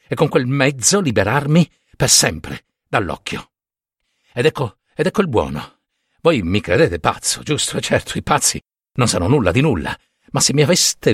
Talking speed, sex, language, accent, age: 170 wpm, male, Italian, native, 60-79